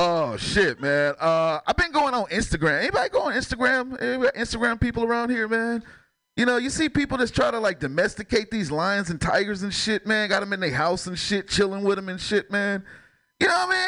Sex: male